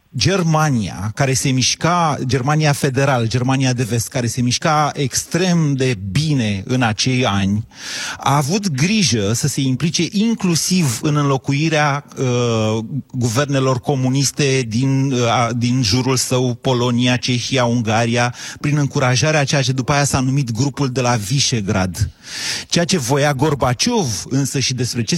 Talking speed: 135 wpm